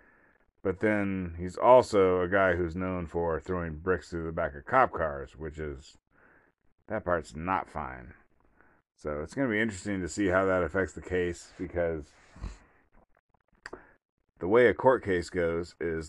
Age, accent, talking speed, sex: 30-49, American, 165 wpm, male